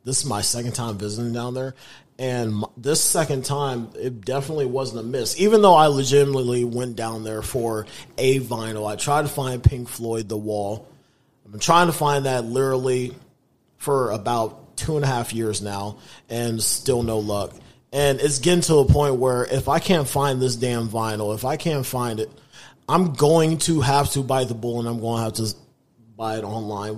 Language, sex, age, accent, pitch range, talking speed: English, male, 30-49, American, 110-140 Hz, 200 wpm